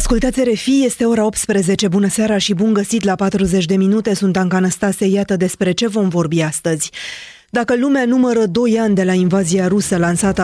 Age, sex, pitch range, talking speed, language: 20-39, female, 170-200 Hz, 190 wpm, Romanian